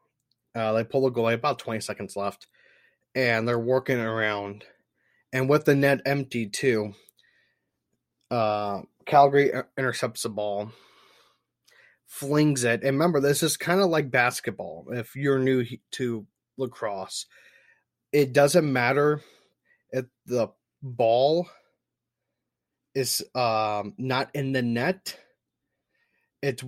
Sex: male